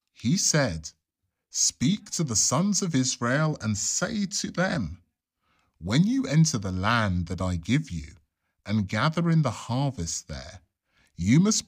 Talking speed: 150 wpm